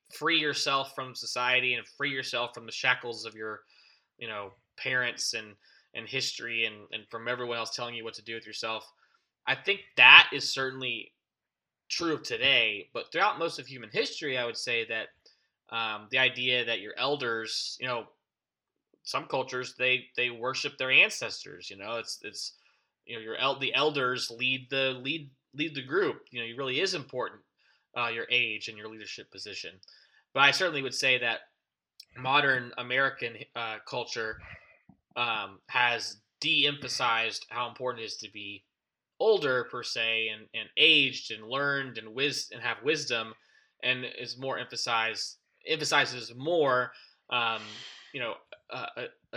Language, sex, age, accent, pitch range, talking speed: English, male, 20-39, American, 115-140 Hz, 165 wpm